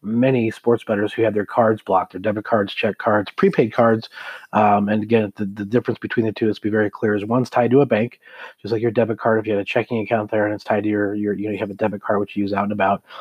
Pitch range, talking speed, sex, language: 105-120 Hz, 295 wpm, male, English